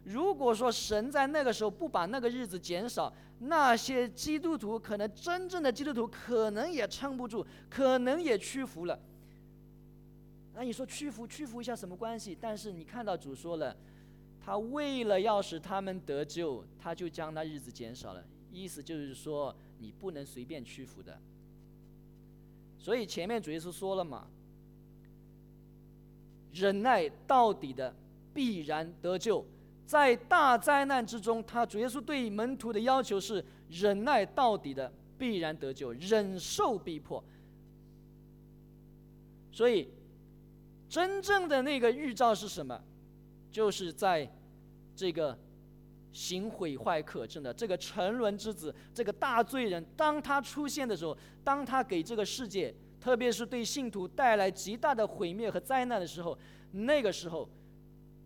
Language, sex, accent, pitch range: English, male, Chinese, 180-260 Hz